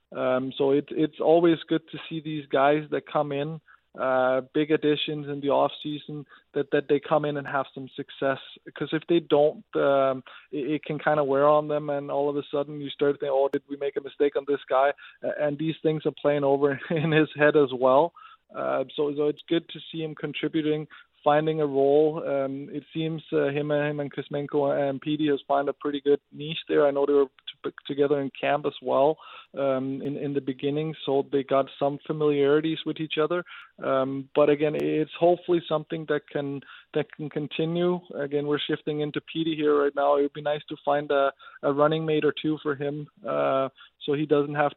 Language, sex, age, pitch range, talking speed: English, male, 20-39, 140-155 Hz, 215 wpm